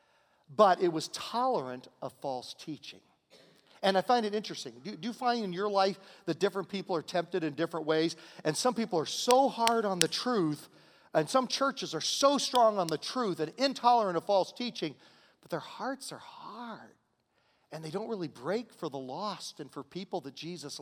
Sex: male